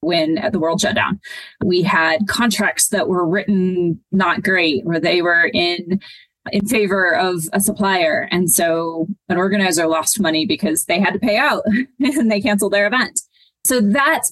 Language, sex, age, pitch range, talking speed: English, female, 20-39, 185-235 Hz, 170 wpm